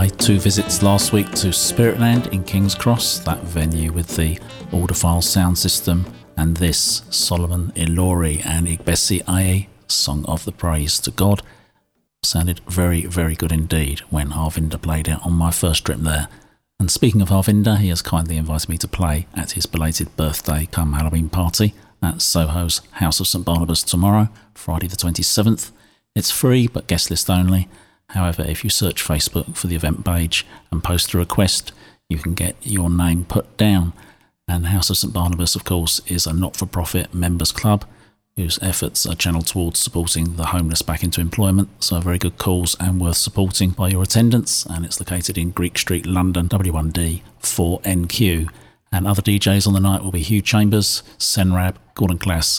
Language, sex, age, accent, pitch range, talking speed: English, male, 40-59, British, 85-100 Hz, 175 wpm